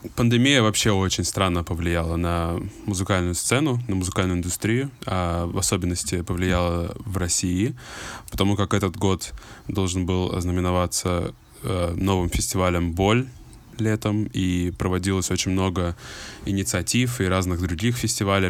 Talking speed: 125 wpm